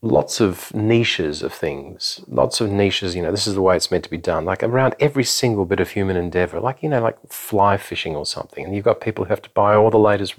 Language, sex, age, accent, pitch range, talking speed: English, male, 40-59, Australian, 90-105 Hz, 265 wpm